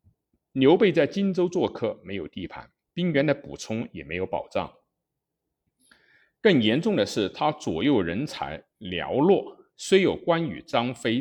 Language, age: Chinese, 50-69